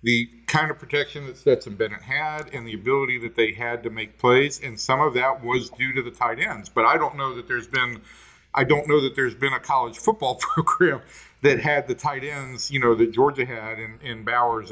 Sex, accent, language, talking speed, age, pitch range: male, American, English, 230 wpm, 50-69, 115-140 Hz